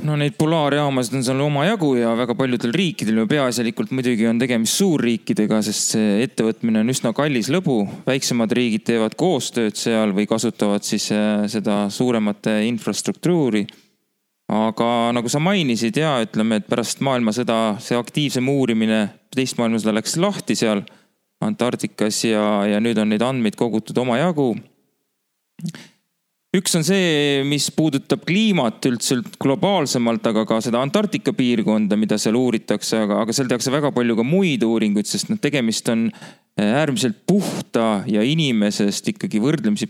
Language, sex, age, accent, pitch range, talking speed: English, male, 30-49, Finnish, 110-145 Hz, 145 wpm